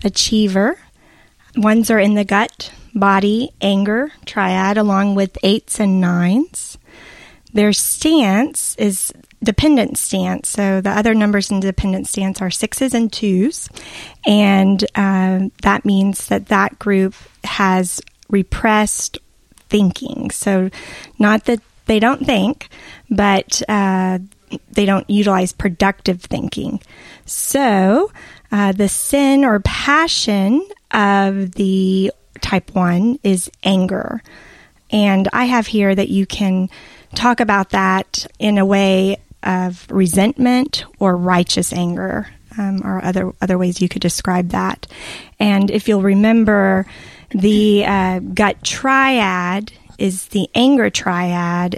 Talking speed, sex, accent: 120 wpm, female, American